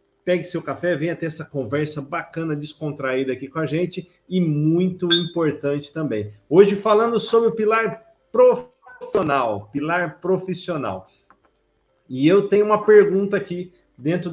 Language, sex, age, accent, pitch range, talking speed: Portuguese, male, 40-59, Brazilian, 155-215 Hz, 135 wpm